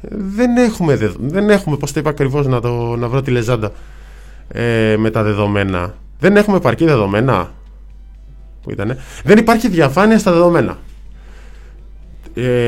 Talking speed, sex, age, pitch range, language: 140 wpm, male, 20-39, 110-185 Hz, Greek